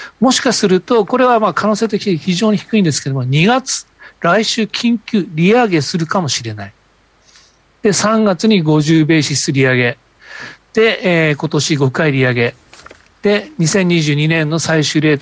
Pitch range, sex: 145-200 Hz, male